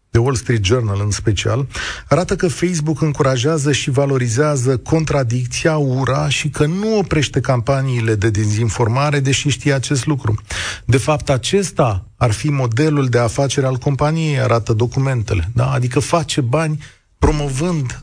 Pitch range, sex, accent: 115-160 Hz, male, native